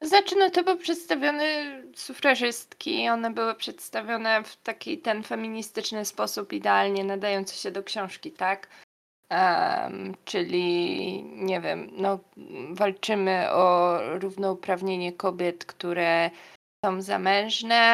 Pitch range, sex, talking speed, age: 180-210 Hz, female, 105 wpm, 20-39